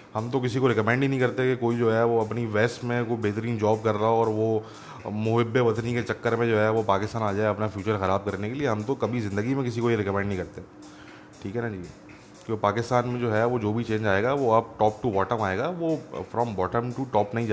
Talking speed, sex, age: 220 wpm, male, 20-39